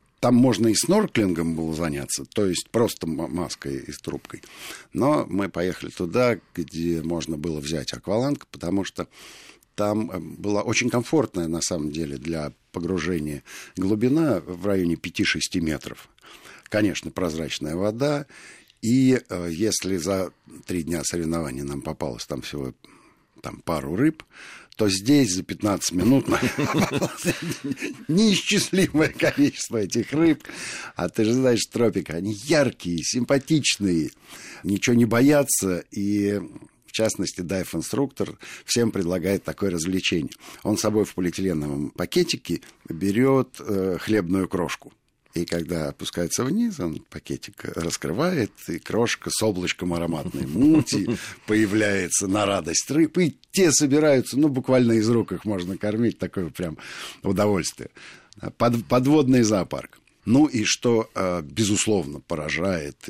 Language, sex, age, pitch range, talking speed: Russian, male, 60-79, 85-120 Hz, 120 wpm